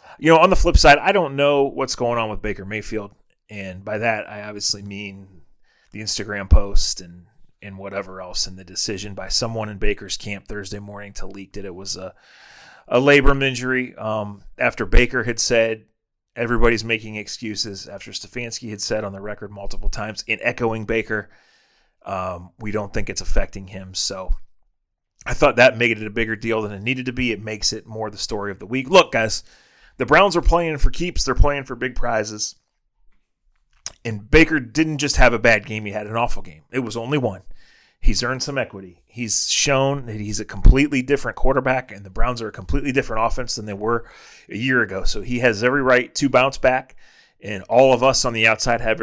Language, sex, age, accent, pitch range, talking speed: English, male, 30-49, American, 100-130 Hz, 205 wpm